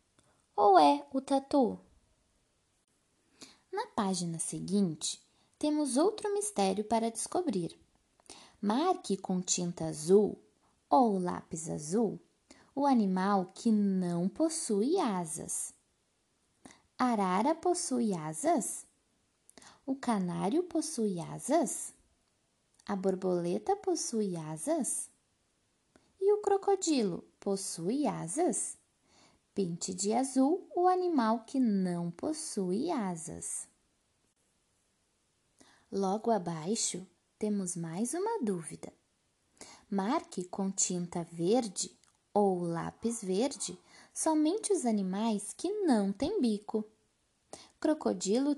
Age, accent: 20-39, Brazilian